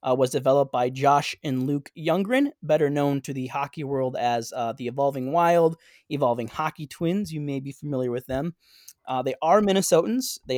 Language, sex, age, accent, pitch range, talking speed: English, male, 20-39, American, 125-155 Hz, 185 wpm